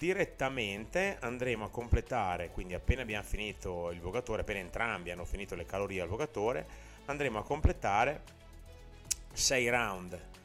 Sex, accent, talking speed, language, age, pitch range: male, native, 130 wpm, Italian, 30-49, 90-115 Hz